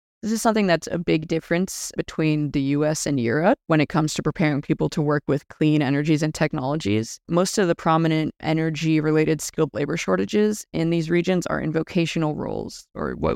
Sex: female